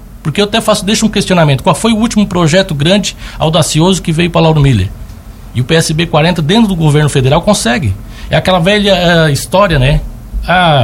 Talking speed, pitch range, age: 195 wpm, 135-195 Hz, 60-79